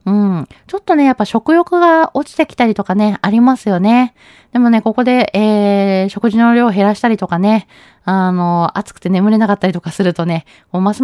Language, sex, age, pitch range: Japanese, female, 20-39, 175-225 Hz